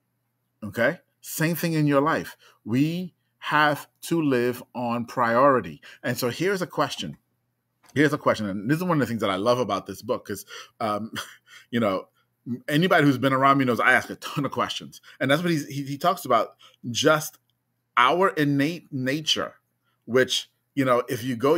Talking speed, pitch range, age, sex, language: 185 wpm, 120-160 Hz, 30-49, male, English